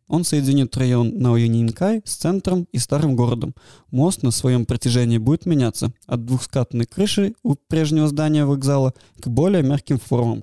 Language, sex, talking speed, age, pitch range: Russian, male, 150 wpm, 20-39, 120-140 Hz